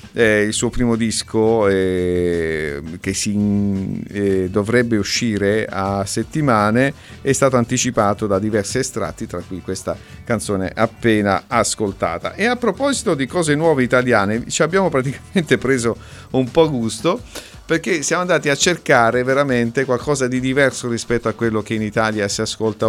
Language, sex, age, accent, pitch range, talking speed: Italian, male, 50-69, native, 105-145 Hz, 145 wpm